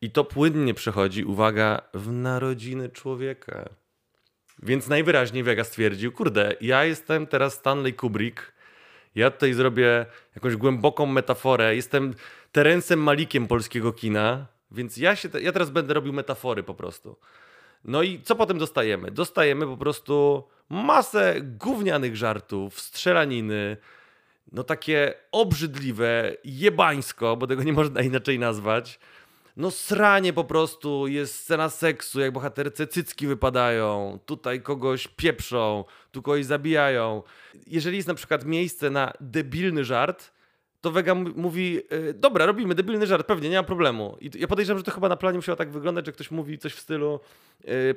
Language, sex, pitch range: Polish, male, 125-160 Hz